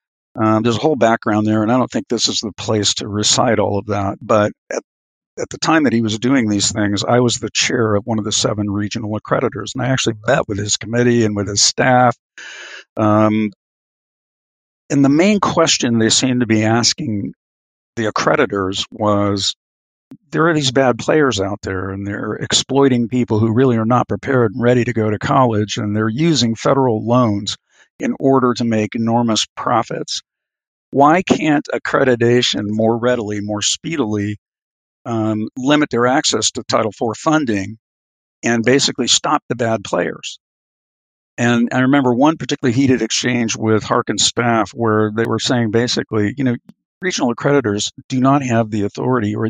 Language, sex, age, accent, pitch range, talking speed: English, male, 50-69, American, 105-125 Hz, 175 wpm